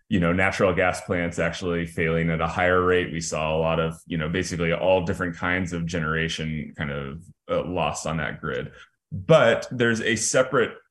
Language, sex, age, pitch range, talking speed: English, male, 20-39, 85-105 Hz, 195 wpm